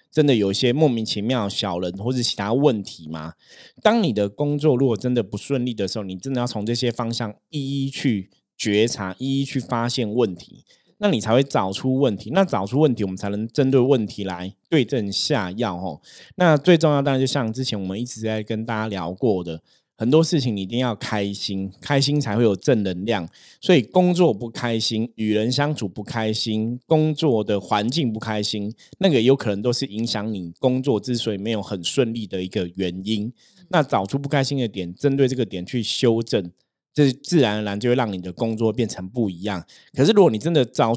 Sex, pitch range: male, 105-135 Hz